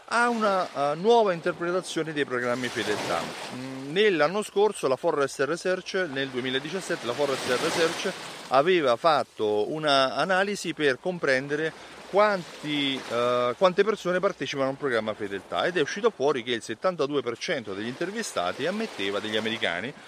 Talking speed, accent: 130 wpm, native